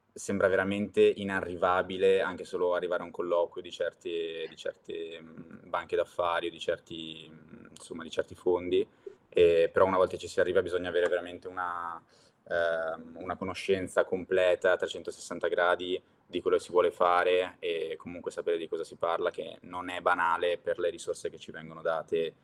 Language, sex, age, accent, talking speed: Italian, male, 20-39, native, 165 wpm